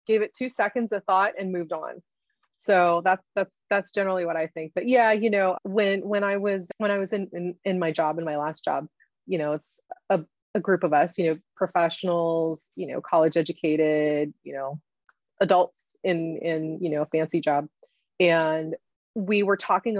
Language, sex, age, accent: English, female, 30-49, American